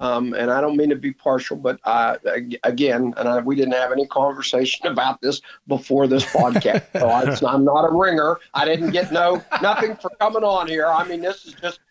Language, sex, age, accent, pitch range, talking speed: English, male, 50-69, American, 135-175 Hz, 220 wpm